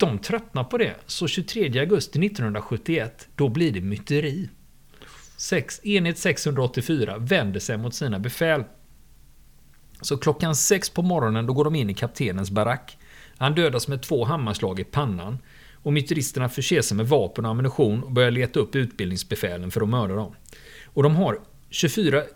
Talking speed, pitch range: 160 wpm, 105-150 Hz